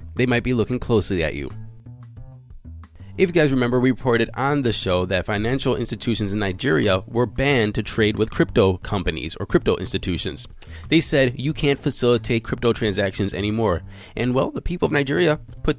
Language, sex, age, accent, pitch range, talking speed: English, male, 20-39, American, 105-140 Hz, 175 wpm